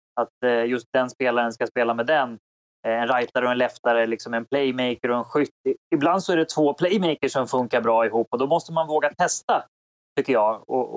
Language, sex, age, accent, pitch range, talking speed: English, male, 20-39, Swedish, 120-155 Hz, 210 wpm